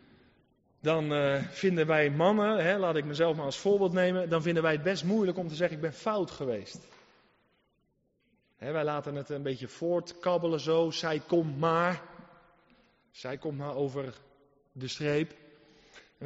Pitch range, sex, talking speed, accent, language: 165-245 Hz, male, 160 wpm, Dutch, Dutch